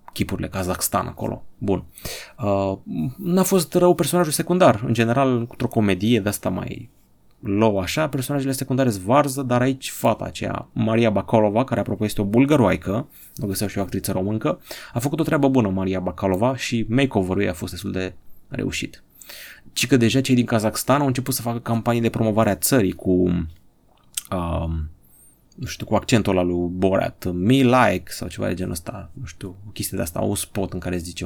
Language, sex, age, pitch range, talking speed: Romanian, male, 30-49, 95-130 Hz, 180 wpm